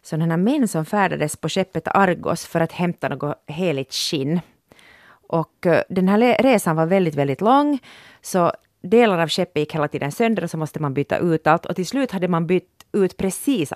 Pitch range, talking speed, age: 160-215 Hz, 200 wpm, 30-49